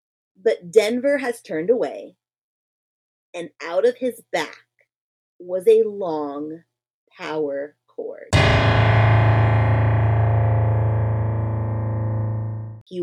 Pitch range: 140-225 Hz